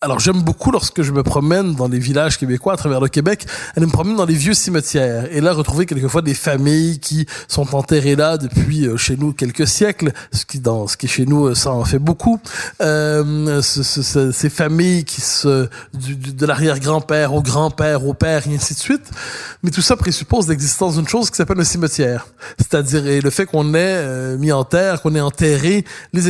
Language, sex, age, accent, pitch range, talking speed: French, male, 20-39, French, 140-175 Hz, 210 wpm